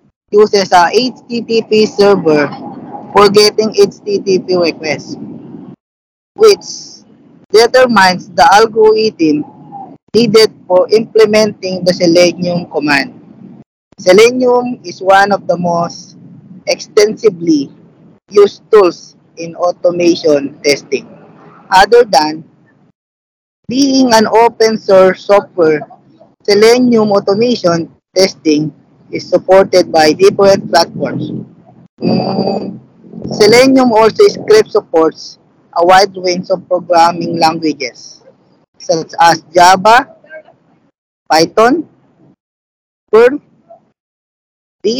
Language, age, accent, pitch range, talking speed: English, 20-39, Filipino, 170-225 Hz, 80 wpm